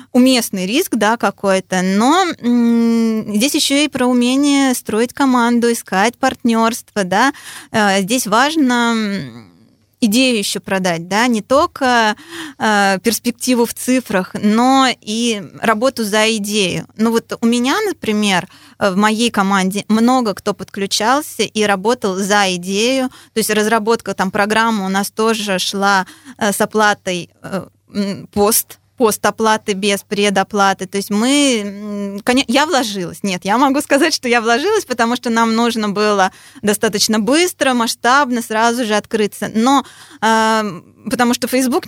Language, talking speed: Russian, 125 wpm